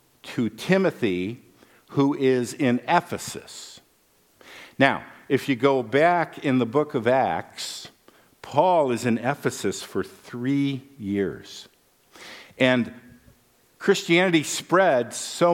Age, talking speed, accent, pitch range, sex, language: 50-69, 105 wpm, American, 125-175 Hz, male, English